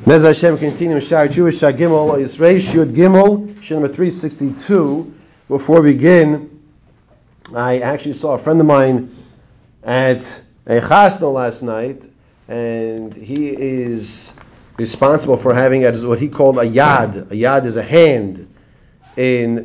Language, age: English, 40-59